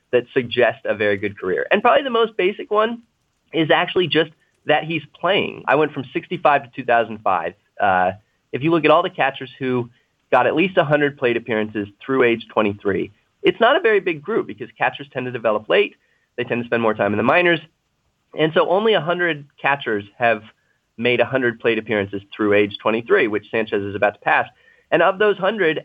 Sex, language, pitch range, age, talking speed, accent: male, English, 115-155 Hz, 30-49, 200 wpm, American